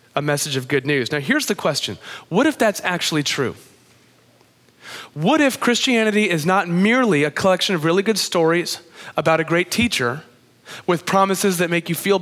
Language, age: English, 30-49